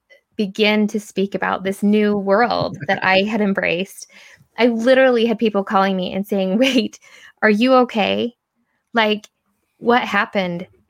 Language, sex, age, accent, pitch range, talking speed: English, female, 20-39, American, 190-225 Hz, 145 wpm